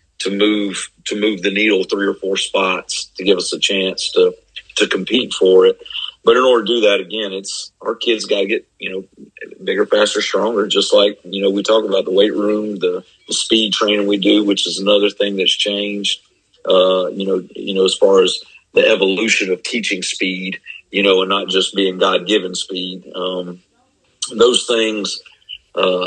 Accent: American